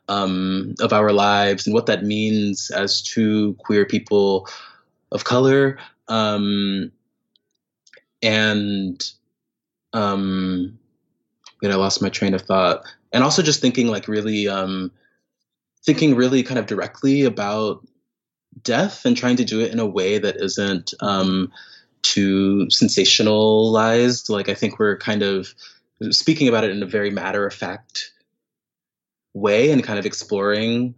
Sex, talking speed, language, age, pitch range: male, 140 wpm, English, 20-39, 95-115 Hz